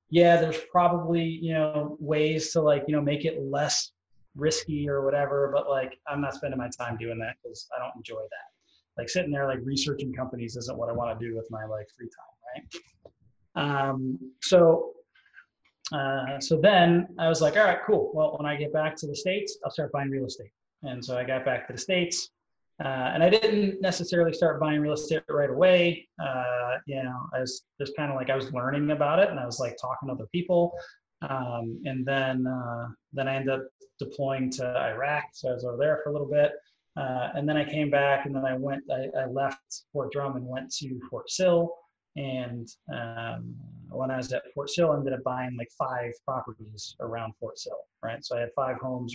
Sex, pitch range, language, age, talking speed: male, 130-155 Hz, English, 20-39, 215 wpm